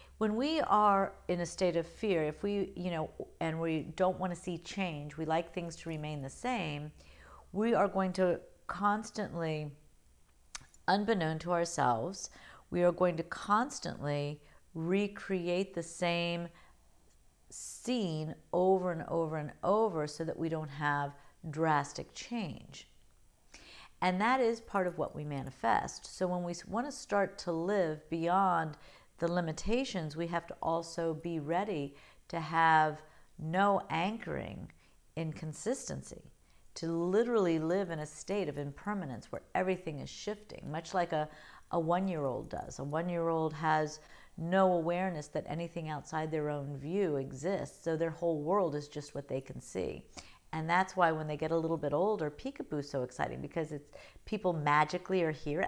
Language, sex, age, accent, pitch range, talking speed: English, female, 50-69, American, 150-185 Hz, 155 wpm